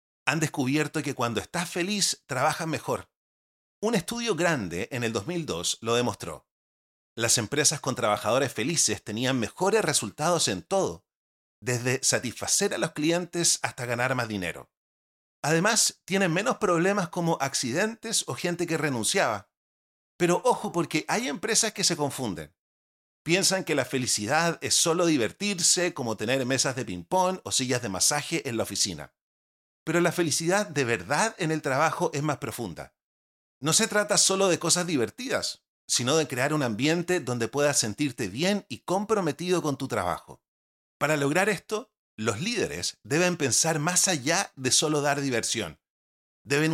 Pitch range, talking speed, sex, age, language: 110-175 Hz, 150 wpm, male, 40-59, Spanish